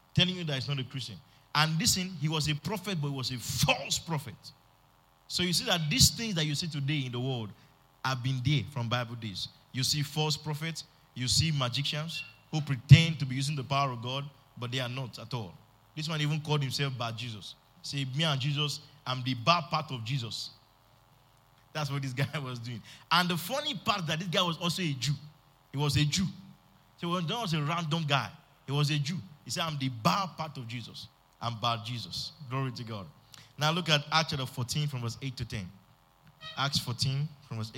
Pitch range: 130-165 Hz